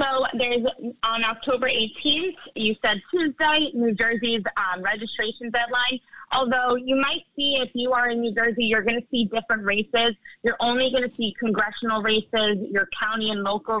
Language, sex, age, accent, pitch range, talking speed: English, female, 20-39, American, 210-260 Hz, 175 wpm